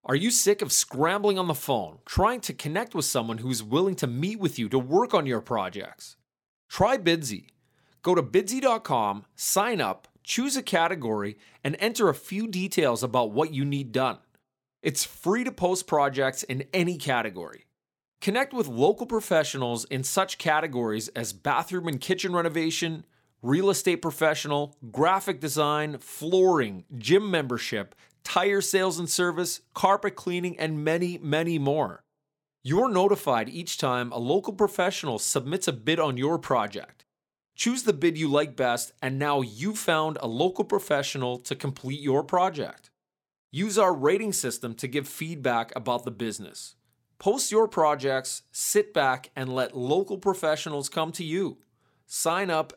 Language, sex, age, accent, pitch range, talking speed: English, male, 30-49, American, 130-185 Hz, 155 wpm